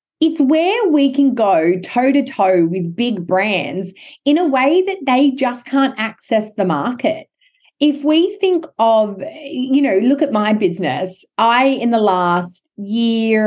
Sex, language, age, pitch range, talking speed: female, English, 30-49, 195-275 Hz, 150 wpm